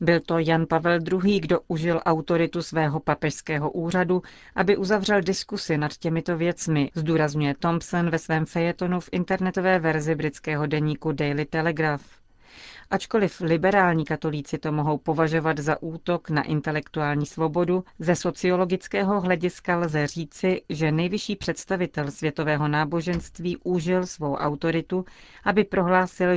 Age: 40-59